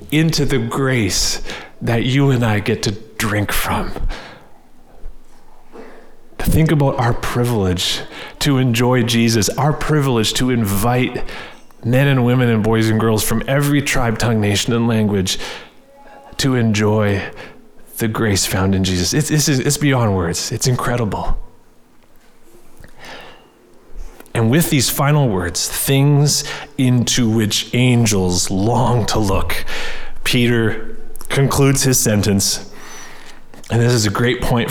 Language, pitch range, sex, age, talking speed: English, 100-130 Hz, male, 30-49, 125 wpm